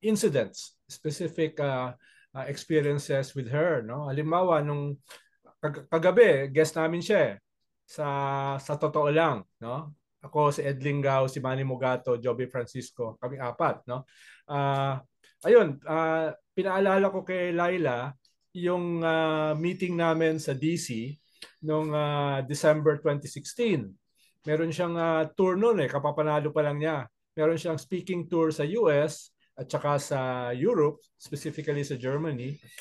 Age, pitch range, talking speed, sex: 20-39, 140-165 Hz, 130 wpm, male